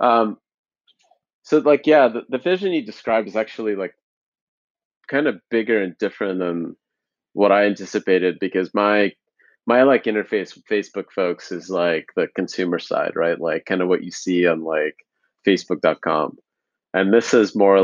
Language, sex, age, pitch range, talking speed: English, male, 30-49, 90-110 Hz, 160 wpm